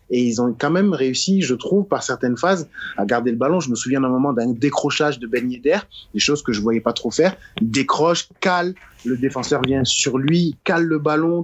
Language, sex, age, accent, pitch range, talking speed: French, male, 30-49, French, 115-145 Hz, 230 wpm